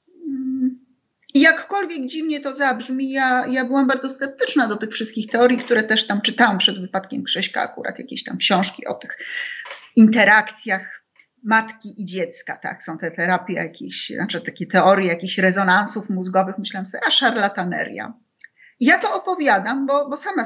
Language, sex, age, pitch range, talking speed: Polish, female, 30-49, 215-275 Hz, 155 wpm